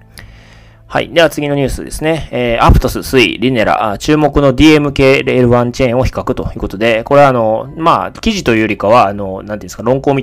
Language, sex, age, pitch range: Japanese, male, 20-39, 100-145 Hz